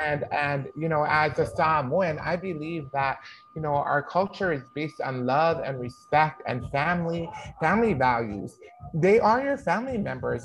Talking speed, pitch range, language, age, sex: 165 wpm, 145-180 Hz, English, 30-49, male